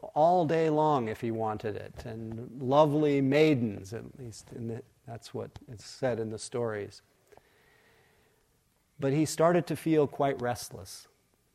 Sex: male